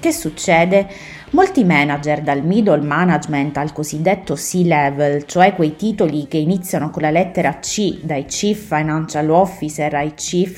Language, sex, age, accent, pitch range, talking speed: Italian, female, 20-39, native, 150-215 Hz, 140 wpm